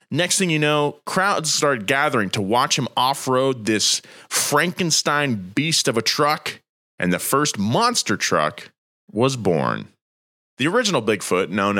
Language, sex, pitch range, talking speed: English, male, 95-145 Hz, 140 wpm